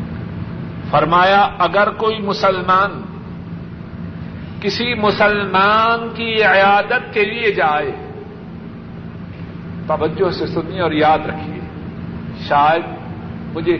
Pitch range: 175-225 Hz